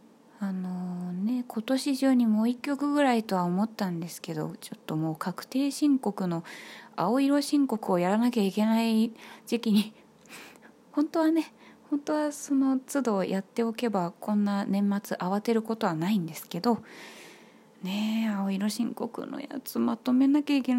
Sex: female